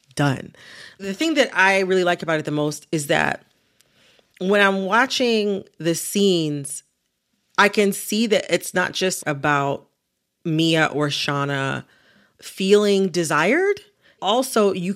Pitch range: 155-230 Hz